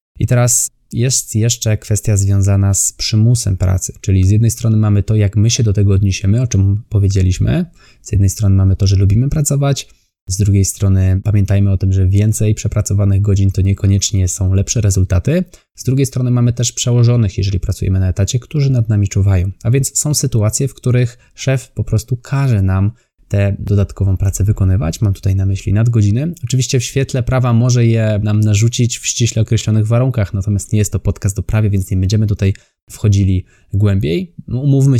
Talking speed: 185 wpm